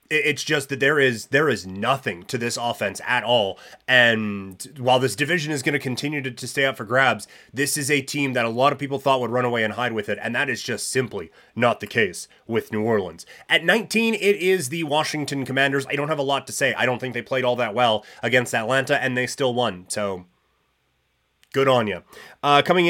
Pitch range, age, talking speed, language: 120-160 Hz, 30-49, 225 wpm, English